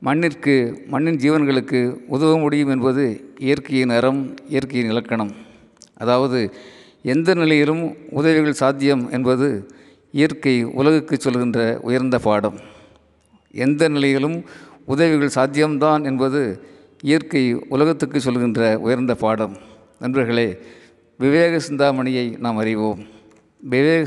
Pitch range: 115-145 Hz